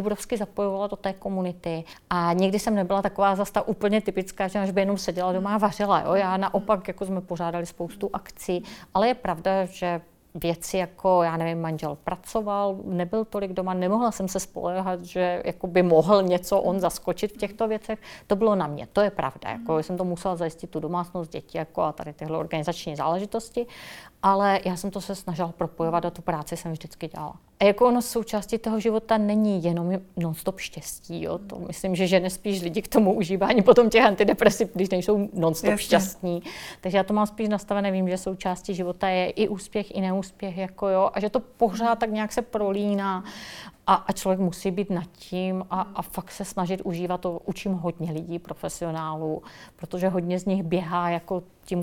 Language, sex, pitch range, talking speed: Czech, female, 175-200 Hz, 190 wpm